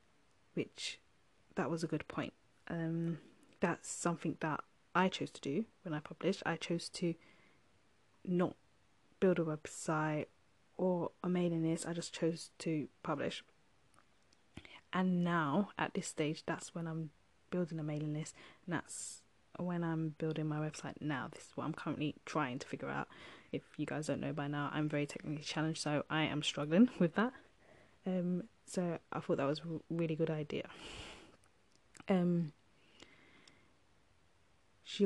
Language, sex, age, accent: English, female, 20-39, British